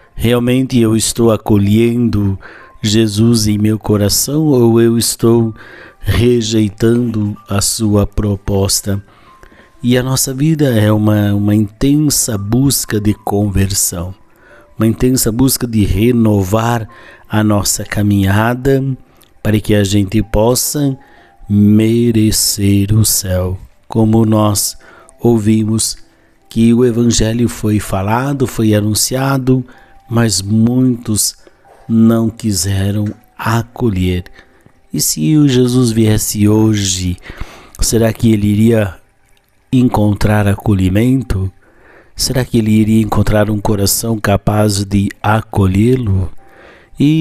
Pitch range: 100-115 Hz